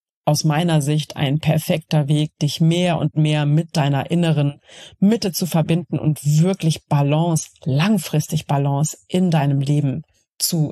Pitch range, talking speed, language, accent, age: 150-180 Hz, 140 wpm, German, German, 40-59